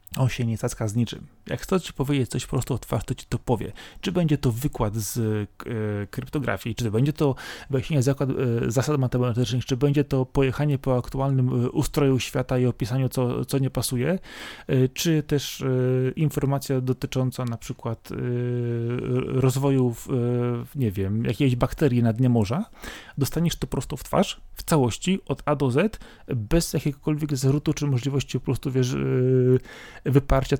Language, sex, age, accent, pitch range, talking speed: Polish, male, 30-49, native, 125-150 Hz, 175 wpm